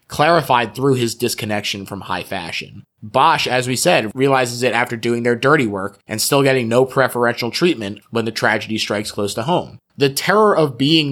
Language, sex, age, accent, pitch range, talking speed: English, male, 20-39, American, 105-130 Hz, 190 wpm